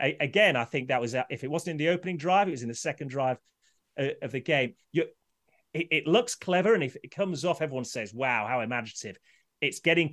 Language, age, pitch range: English, 30-49, 120-175 Hz